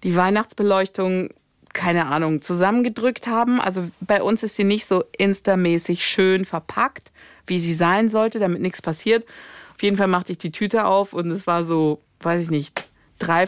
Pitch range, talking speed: 180-250 Hz, 175 wpm